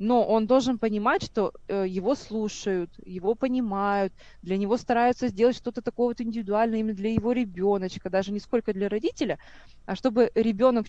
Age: 20-39